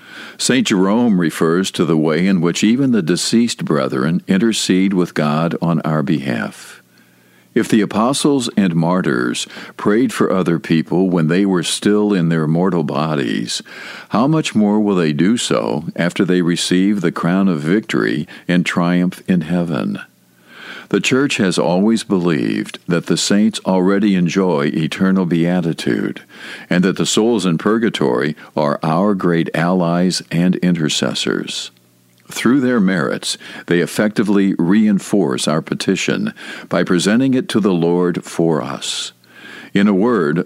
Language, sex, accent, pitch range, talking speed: English, male, American, 80-100 Hz, 140 wpm